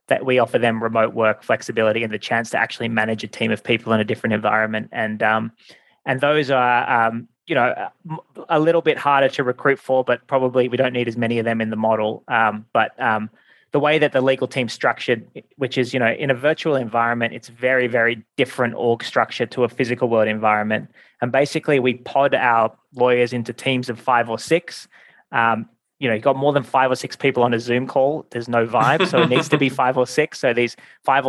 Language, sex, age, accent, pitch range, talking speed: English, male, 20-39, Australian, 115-130 Hz, 230 wpm